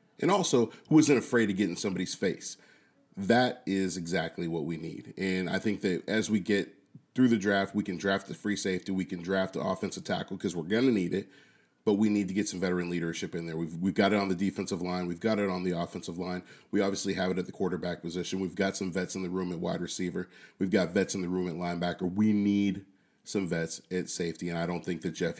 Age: 30-49